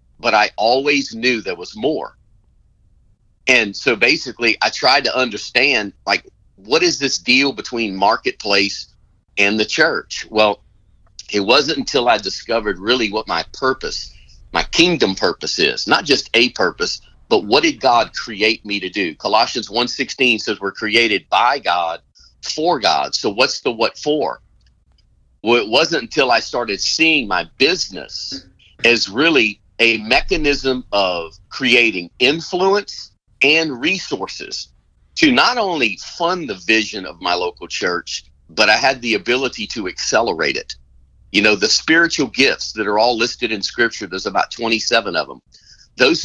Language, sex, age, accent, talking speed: English, male, 40-59, American, 155 wpm